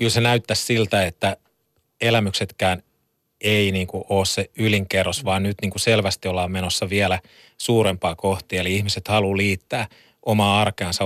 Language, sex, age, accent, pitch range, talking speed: Finnish, male, 30-49, native, 95-110 Hz, 130 wpm